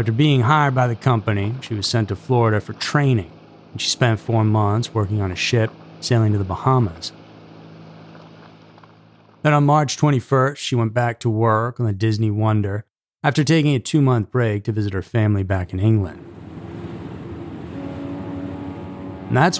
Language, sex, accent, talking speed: English, male, American, 160 wpm